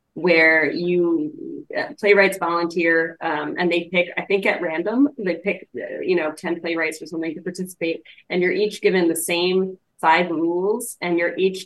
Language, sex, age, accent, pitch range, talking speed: English, female, 20-39, American, 165-205 Hz, 170 wpm